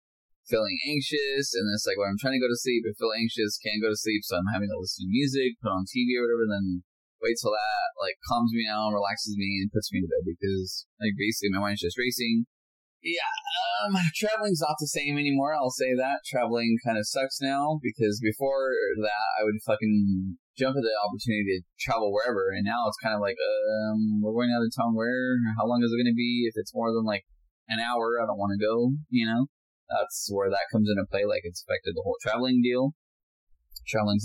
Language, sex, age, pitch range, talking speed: English, male, 10-29, 100-125 Hz, 215 wpm